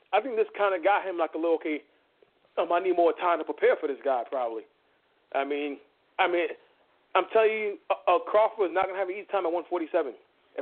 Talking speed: 235 wpm